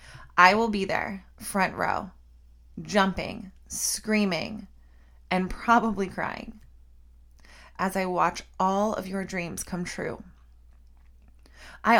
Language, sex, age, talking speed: English, female, 20-39, 105 wpm